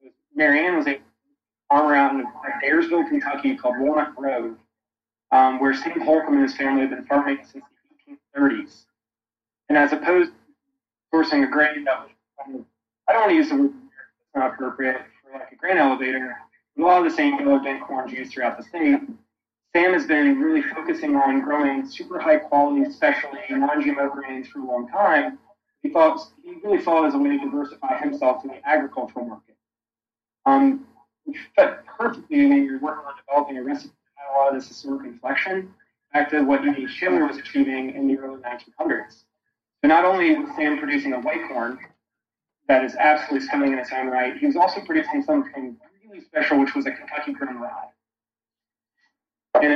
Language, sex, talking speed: English, male, 190 wpm